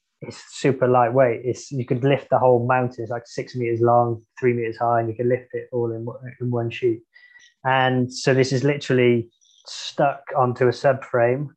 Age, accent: 20-39, British